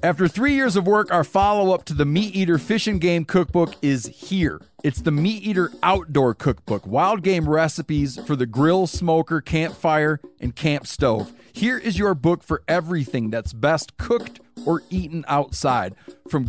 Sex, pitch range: male, 140-175 Hz